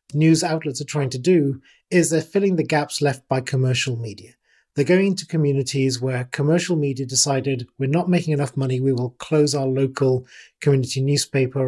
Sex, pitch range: male, 130-160 Hz